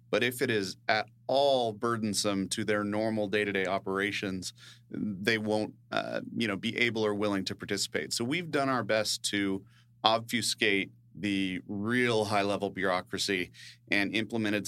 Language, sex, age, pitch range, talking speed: English, male, 30-49, 95-115 Hz, 145 wpm